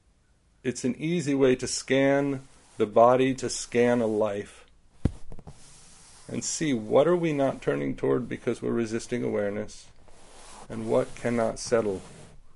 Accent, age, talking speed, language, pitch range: American, 40-59, 135 wpm, English, 105-130 Hz